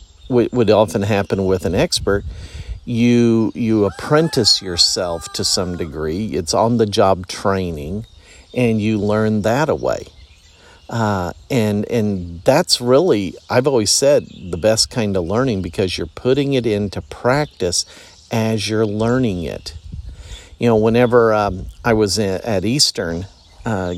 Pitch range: 90-115 Hz